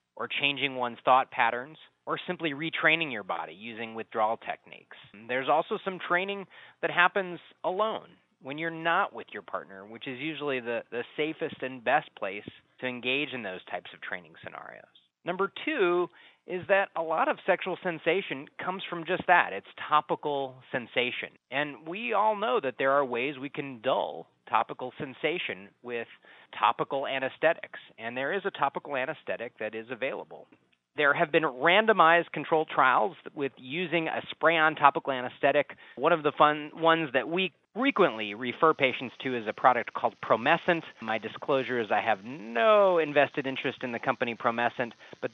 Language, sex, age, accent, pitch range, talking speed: English, male, 30-49, American, 125-170 Hz, 165 wpm